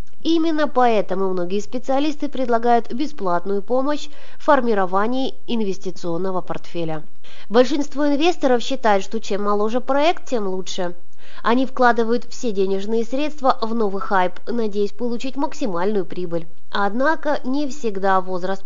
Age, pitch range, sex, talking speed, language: 20-39, 195-265 Hz, female, 115 wpm, Russian